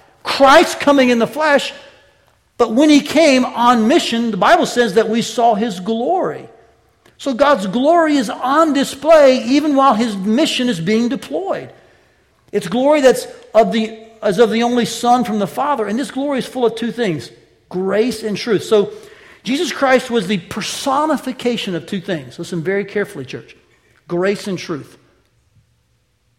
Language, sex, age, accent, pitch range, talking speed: English, male, 60-79, American, 170-245 Hz, 165 wpm